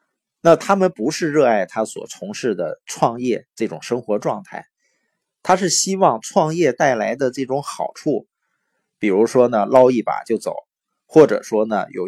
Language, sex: Chinese, male